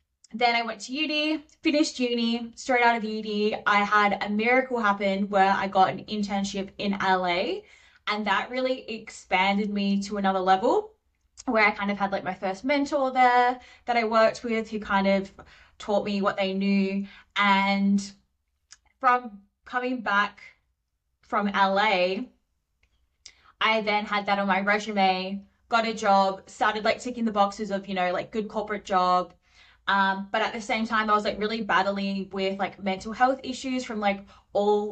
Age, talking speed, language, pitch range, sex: 20-39, 170 wpm, English, 190-225 Hz, female